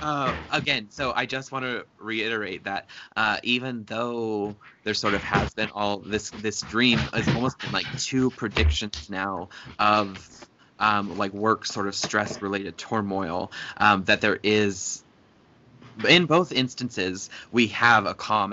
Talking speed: 150 wpm